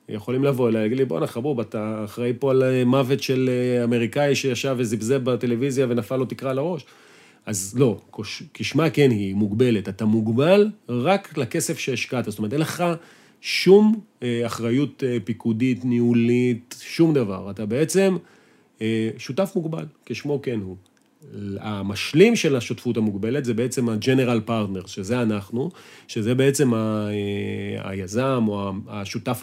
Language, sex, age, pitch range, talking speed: Hebrew, male, 40-59, 110-135 Hz, 130 wpm